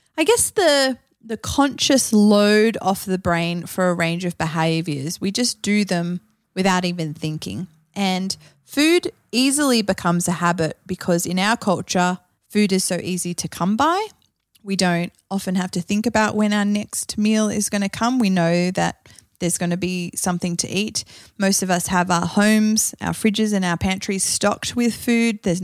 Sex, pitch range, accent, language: female, 175-225 Hz, Australian, English